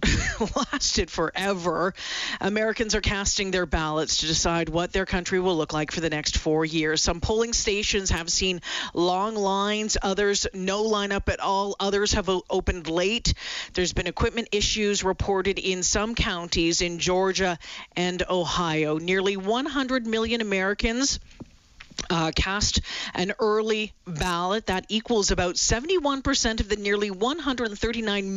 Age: 40-59